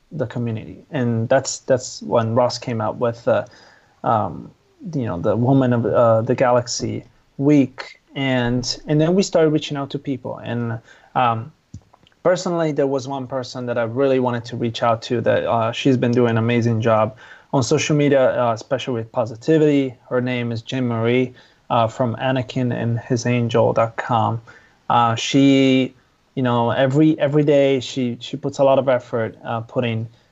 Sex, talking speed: male, 175 wpm